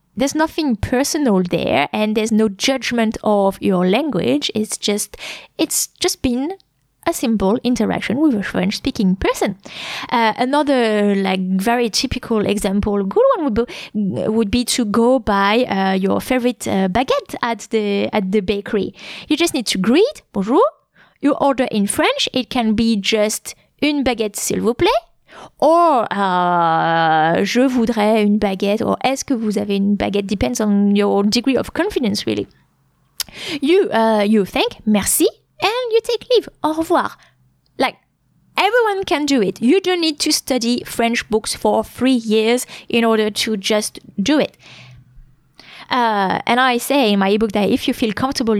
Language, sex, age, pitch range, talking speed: English, female, 20-39, 200-265 Hz, 160 wpm